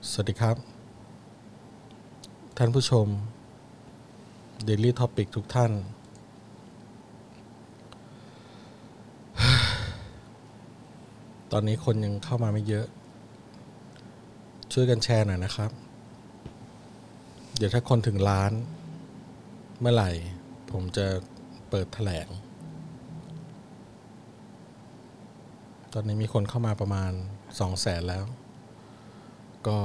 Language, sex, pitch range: Thai, male, 100-115 Hz